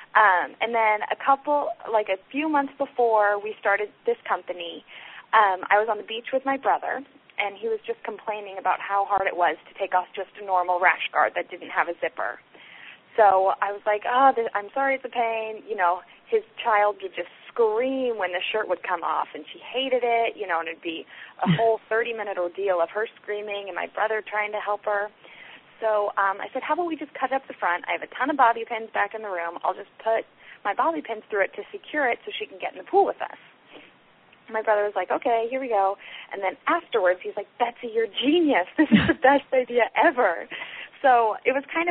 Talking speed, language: 230 wpm, English